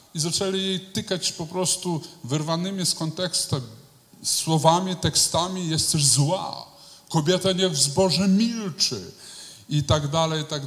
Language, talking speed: Polish, 130 wpm